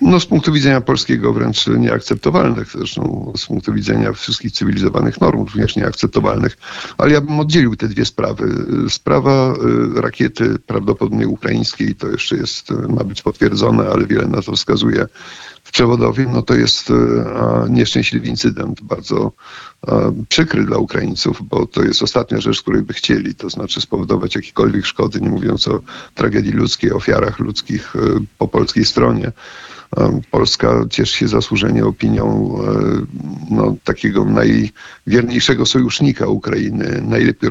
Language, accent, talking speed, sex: Polish, native, 135 wpm, male